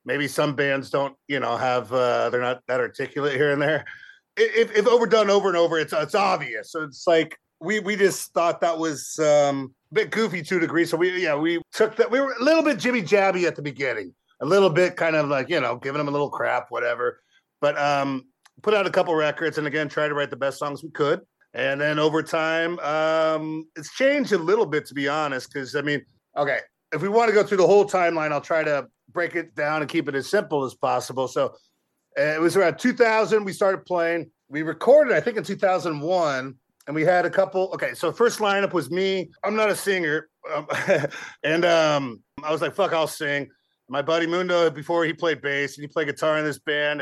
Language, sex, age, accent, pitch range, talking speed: English, male, 40-59, American, 145-185 Hz, 225 wpm